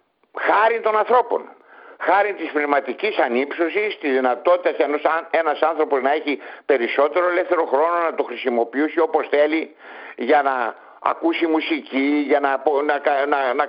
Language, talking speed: Greek, 135 wpm